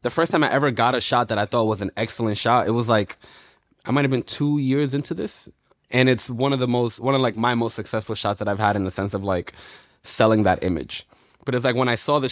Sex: male